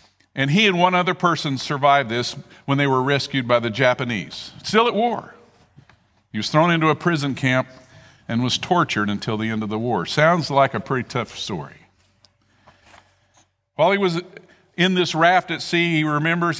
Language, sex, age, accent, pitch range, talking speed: English, male, 50-69, American, 130-170 Hz, 180 wpm